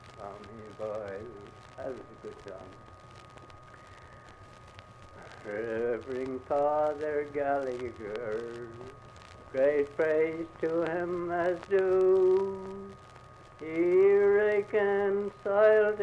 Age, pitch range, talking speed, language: 60-79, 120-180 Hz, 65 wpm, English